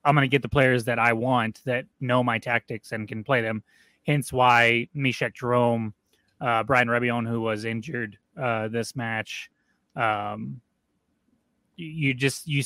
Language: English